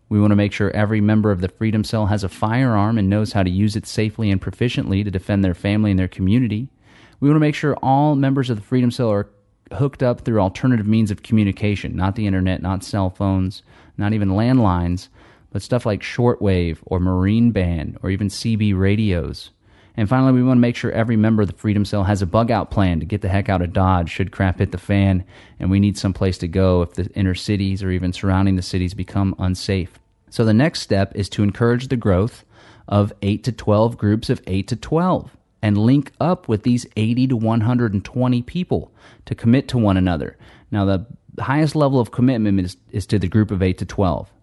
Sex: male